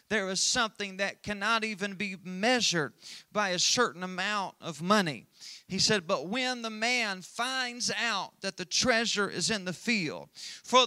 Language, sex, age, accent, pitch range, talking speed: English, male, 40-59, American, 190-240 Hz, 165 wpm